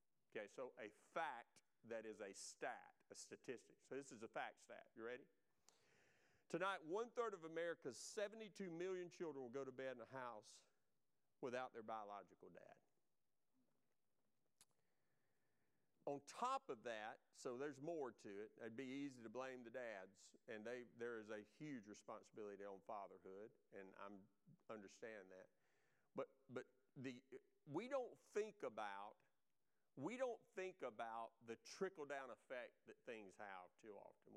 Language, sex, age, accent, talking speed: English, male, 40-59, American, 145 wpm